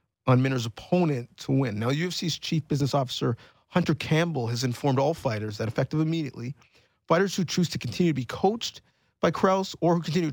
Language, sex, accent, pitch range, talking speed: English, male, American, 120-155 Hz, 185 wpm